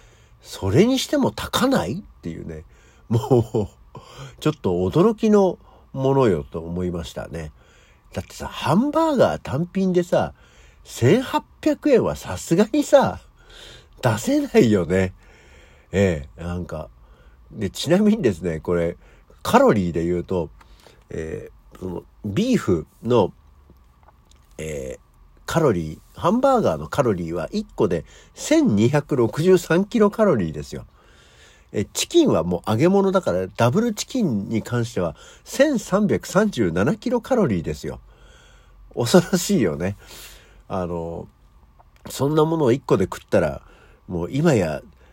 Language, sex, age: Japanese, male, 60-79